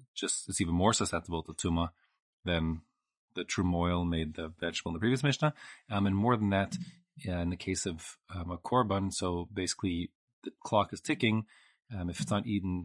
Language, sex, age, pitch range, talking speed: English, male, 30-49, 85-110 Hz, 185 wpm